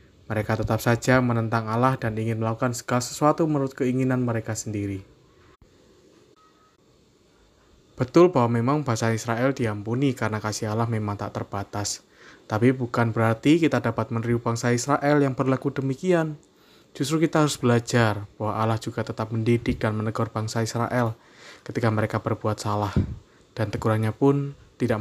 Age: 20-39